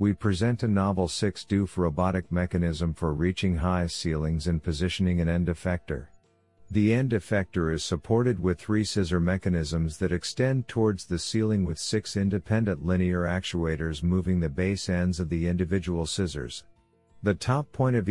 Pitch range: 85-100 Hz